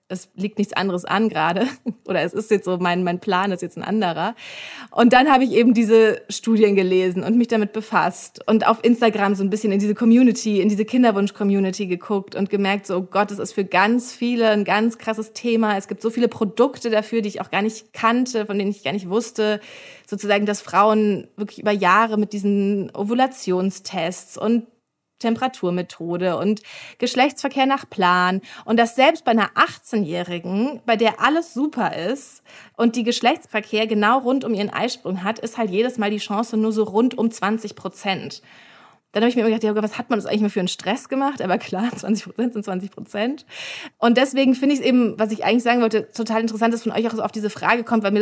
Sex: female